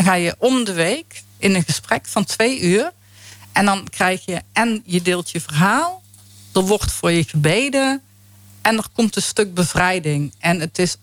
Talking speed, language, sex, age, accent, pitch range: 185 wpm, Dutch, female, 50-69, Dutch, 160-215 Hz